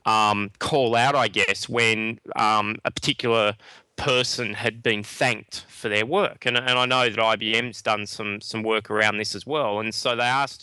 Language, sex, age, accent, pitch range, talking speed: English, male, 20-39, Australian, 110-120 Hz, 190 wpm